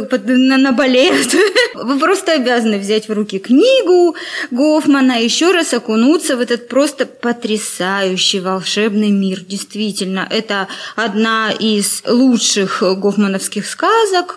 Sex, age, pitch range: female, 20-39, 210-275 Hz